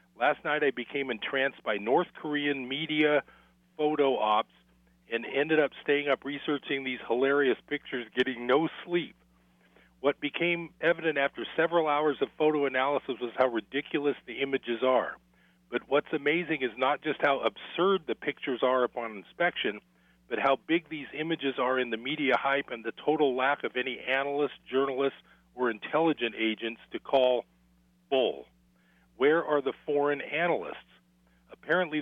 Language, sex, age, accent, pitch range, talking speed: English, male, 40-59, American, 115-150 Hz, 150 wpm